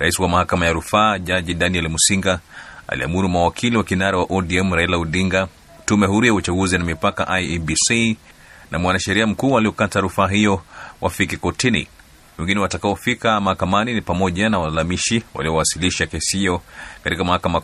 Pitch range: 85-100 Hz